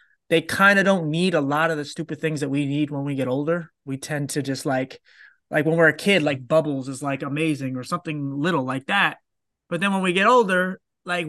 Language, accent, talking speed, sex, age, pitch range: English, American, 240 wpm, male, 30-49, 135-160 Hz